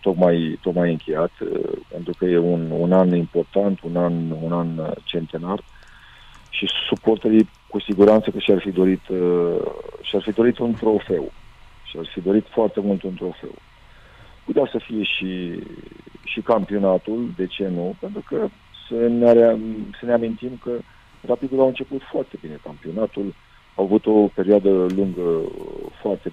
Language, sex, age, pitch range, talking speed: Romanian, male, 40-59, 90-110 Hz, 145 wpm